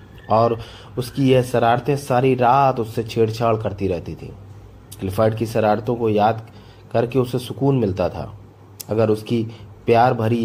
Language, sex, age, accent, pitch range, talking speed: Hindi, male, 30-49, native, 105-120 Hz, 145 wpm